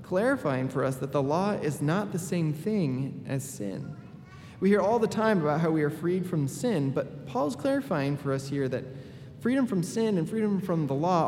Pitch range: 145-185 Hz